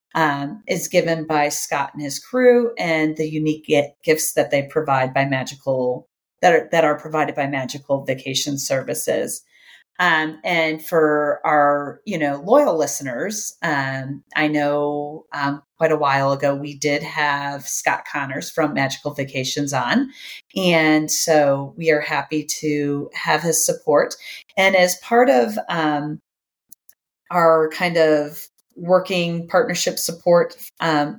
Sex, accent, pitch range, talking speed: female, American, 145-180 Hz, 140 wpm